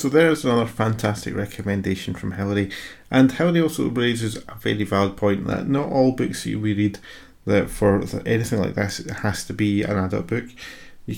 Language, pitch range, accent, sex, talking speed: English, 95-105 Hz, British, male, 190 wpm